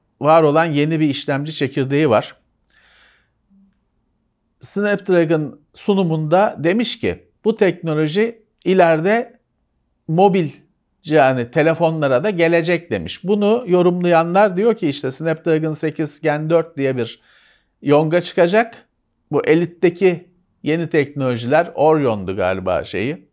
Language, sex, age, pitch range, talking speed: Turkish, male, 50-69, 140-185 Hz, 105 wpm